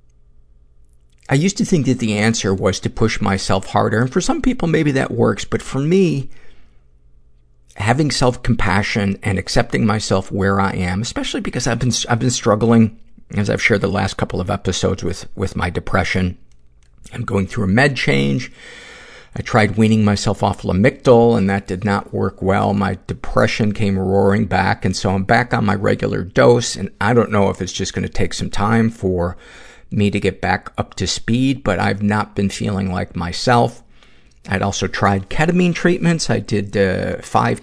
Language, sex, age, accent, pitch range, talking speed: English, male, 50-69, American, 95-120 Hz, 185 wpm